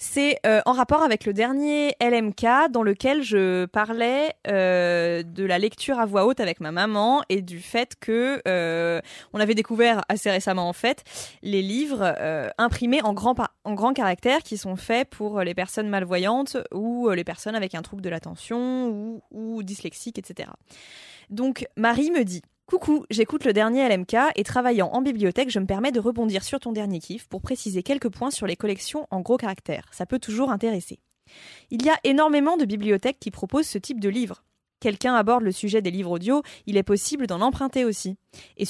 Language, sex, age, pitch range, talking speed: French, female, 20-39, 190-250 Hz, 195 wpm